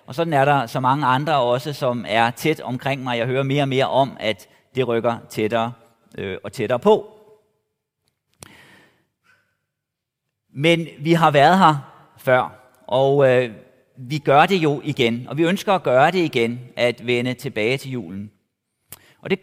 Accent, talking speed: native, 160 wpm